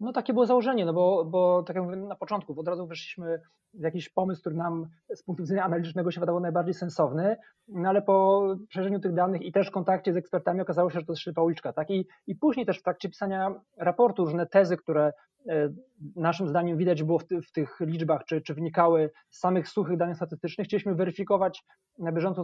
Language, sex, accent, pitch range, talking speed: Polish, male, native, 165-185 Hz, 215 wpm